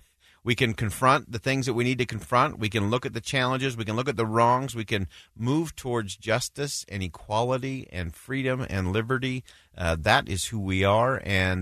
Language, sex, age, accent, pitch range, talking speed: English, male, 40-59, American, 90-130 Hz, 205 wpm